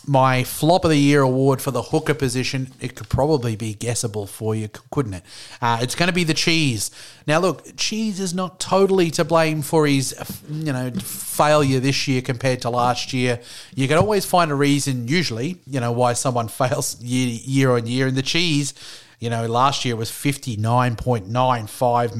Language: English